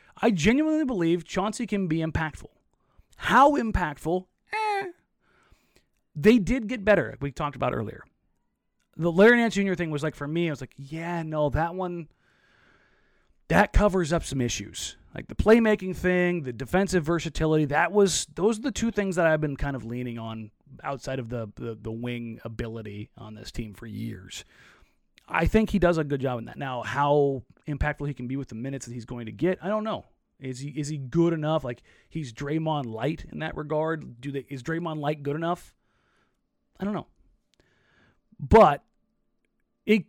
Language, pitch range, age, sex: English, 125-185 Hz, 30-49, male